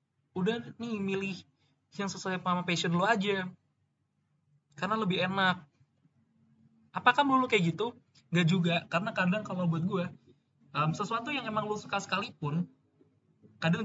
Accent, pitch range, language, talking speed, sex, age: native, 140-180 Hz, Indonesian, 135 wpm, male, 20-39